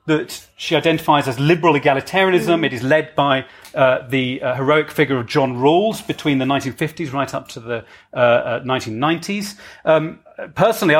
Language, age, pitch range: English, 30-49, 140-180 Hz